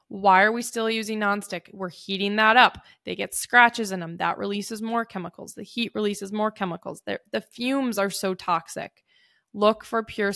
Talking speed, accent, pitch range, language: 185 wpm, American, 185-215 Hz, English